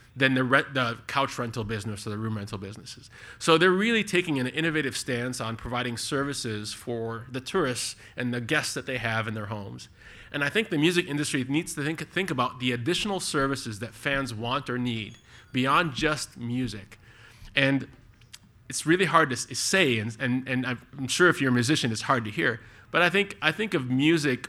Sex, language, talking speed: male, English, 200 wpm